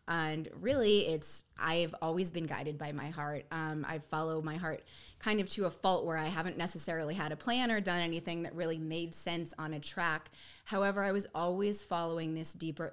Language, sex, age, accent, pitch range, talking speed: English, female, 20-39, American, 155-185 Hz, 205 wpm